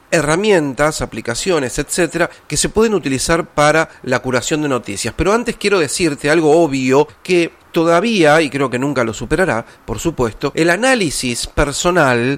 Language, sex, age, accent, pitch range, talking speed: Spanish, male, 40-59, Argentinian, 125-170 Hz, 150 wpm